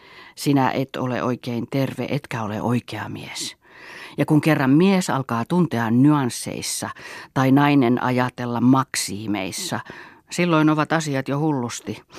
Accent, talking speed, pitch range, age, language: native, 125 wpm, 120-155 Hz, 40-59, Finnish